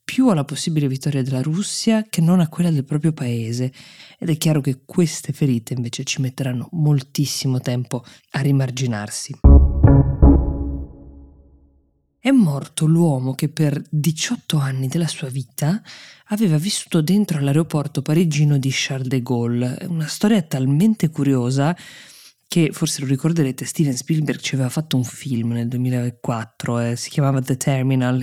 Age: 20-39